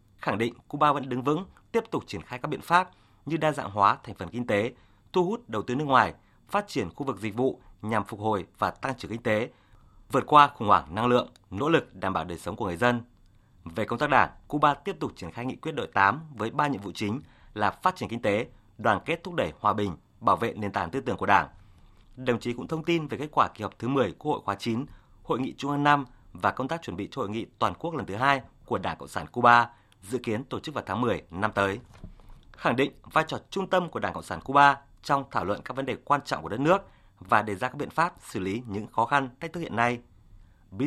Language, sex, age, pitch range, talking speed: Vietnamese, male, 30-49, 100-135 Hz, 265 wpm